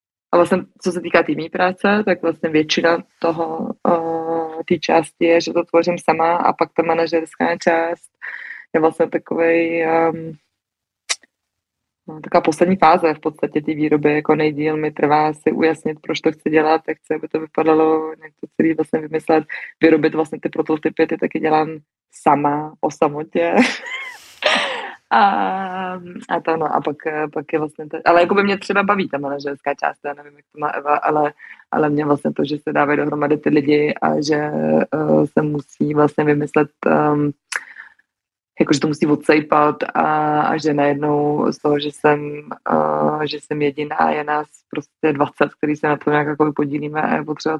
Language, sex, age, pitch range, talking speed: Czech, female, 20-39, 150-165 Hz, 175 wpm